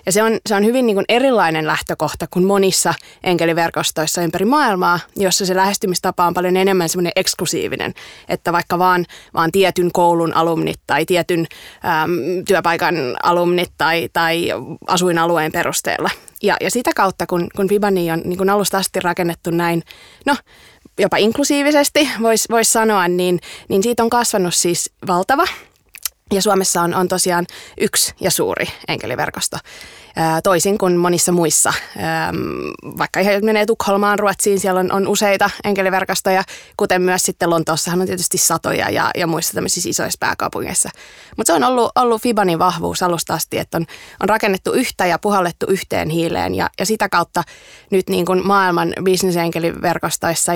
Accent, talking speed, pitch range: native, 150 wpm, 170-200 Hz